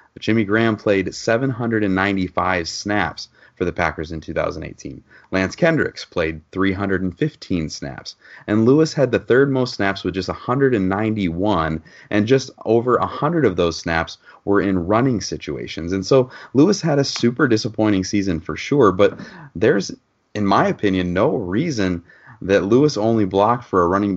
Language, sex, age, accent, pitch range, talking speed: English, male, 30-49, American, 90-110 Hz, 150 wpm